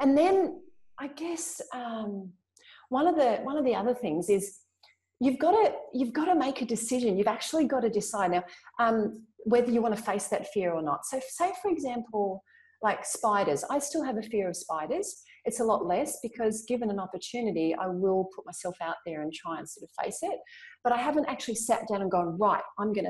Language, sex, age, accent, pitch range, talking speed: English, female, 40-59, Australian, 190-270 Hz, 220 wpm